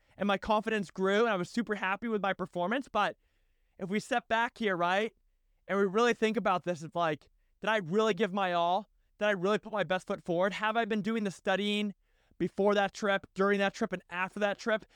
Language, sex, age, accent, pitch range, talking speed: English, male, 20-39, American, 180-235 Hz, 230 wpm